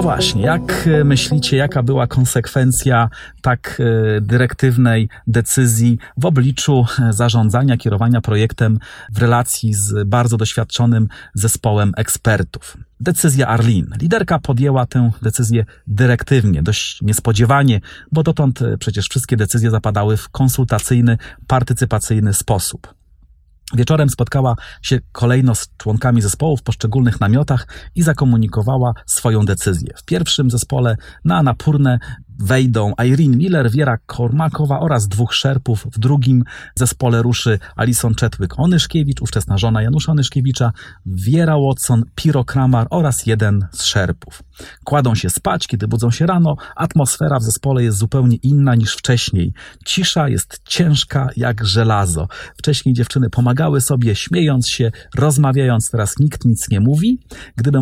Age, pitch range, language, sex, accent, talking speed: 40-59, 110-135 Hz, Polish, male, native, 125 wpm